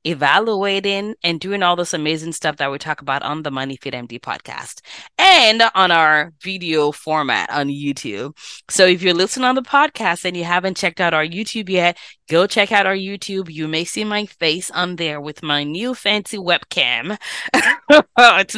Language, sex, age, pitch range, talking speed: English, female, 20-39, 150-205 Hz, 180 wpm